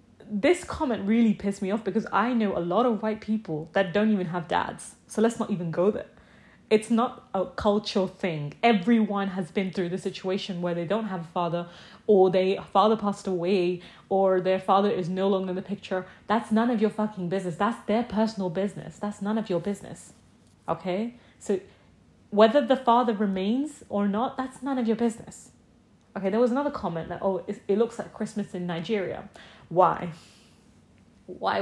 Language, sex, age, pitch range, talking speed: English, female, 30-49, 185-220 Hz, 190 wpm